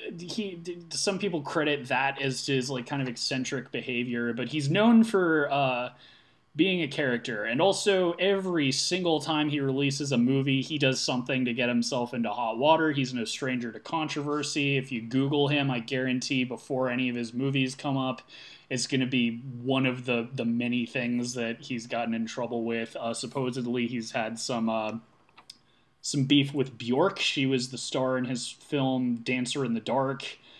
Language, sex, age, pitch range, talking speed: English, male, 20-39, 120-150 Hz, 180 wpm